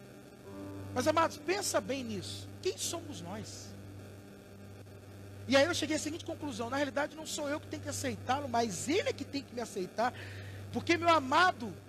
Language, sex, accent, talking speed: Portuguese, male, Brazilian, 175 wpm